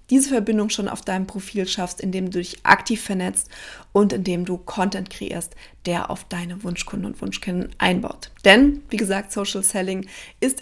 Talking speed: 170 wpm